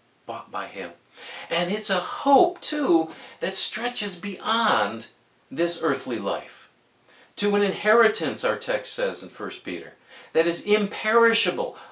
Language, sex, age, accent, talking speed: English, male, 50-69, American, 130 wpm